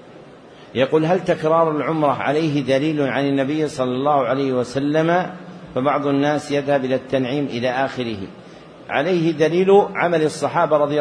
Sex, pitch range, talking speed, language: male, 150-180 Hz, 130 wpm, Arabic